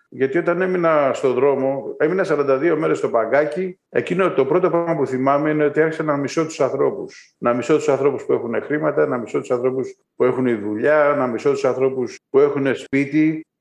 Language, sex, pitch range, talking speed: Greek, male, 130-155 Hz, 195 wpm